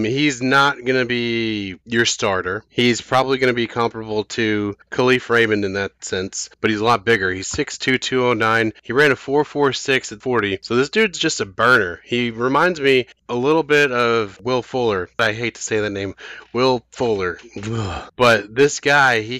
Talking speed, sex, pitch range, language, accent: 180 wpm, male, 105-125 Hz, English, American